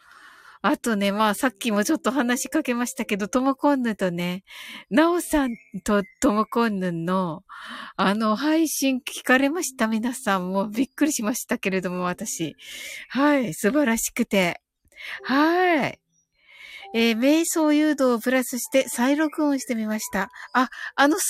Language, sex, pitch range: Japanese, female, 205-285 Hz